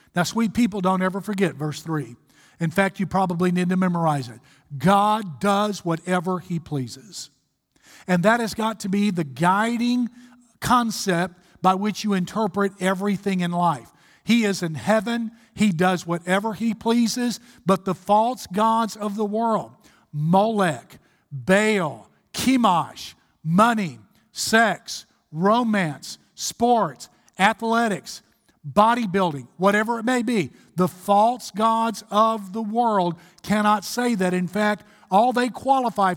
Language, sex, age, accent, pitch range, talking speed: English, male, 50-69, American, 180-225 Hz, 135 wpm